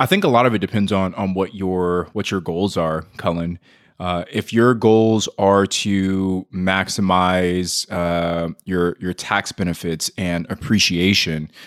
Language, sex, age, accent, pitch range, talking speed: English, male, 20-39, American, 90-105 Hz, 155 wpm